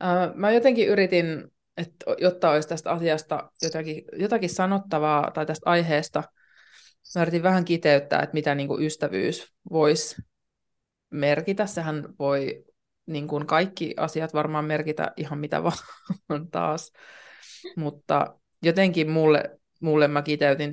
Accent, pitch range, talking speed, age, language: native, 145-170 Hz, 115 wpm, 20-39, Finnish